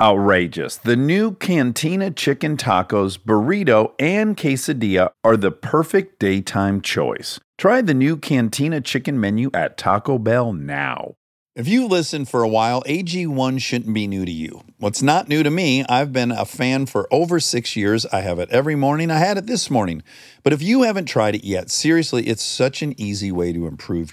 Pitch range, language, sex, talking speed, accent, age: 100-150 Hz, English, male, 185 wpm, American, 50-69